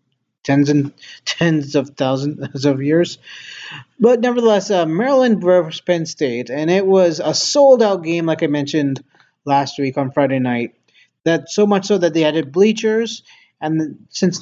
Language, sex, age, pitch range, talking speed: English, male, 30-49, 140-190 Hz, 160 wpm